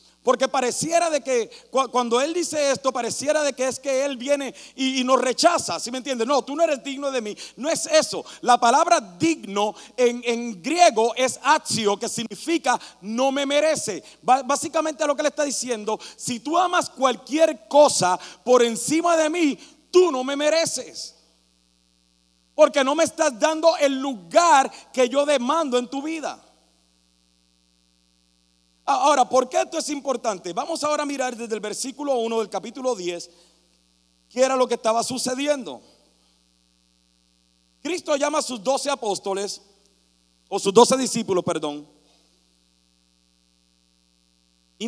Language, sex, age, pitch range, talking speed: Spanish, male, 40-59, 175-280 Hz, 150 wpm